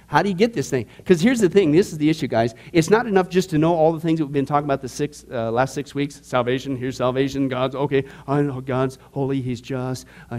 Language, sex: English, male